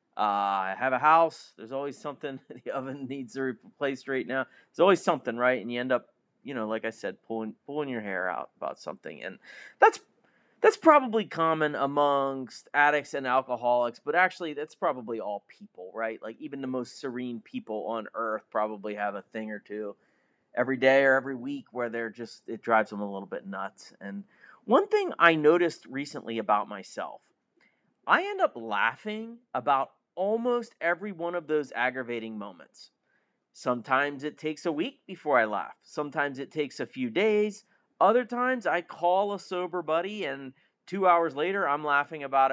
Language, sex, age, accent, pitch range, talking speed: English, male, 30-49, American, 125-195 Hz, 180 wpm